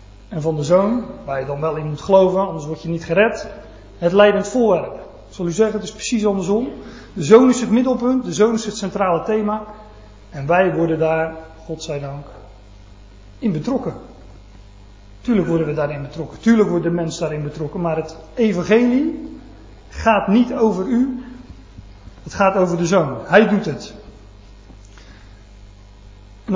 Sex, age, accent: male, 40-59, Dutch